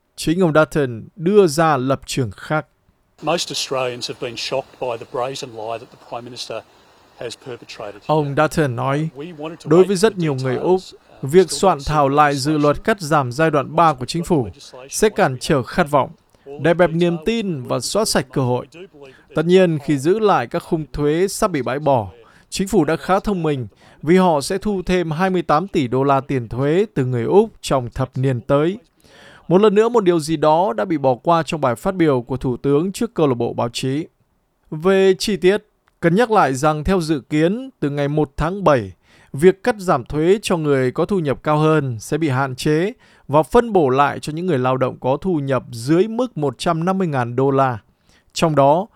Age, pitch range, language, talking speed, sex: 20-39, 140-185 Hz, Vietnamese, 190 wpm, male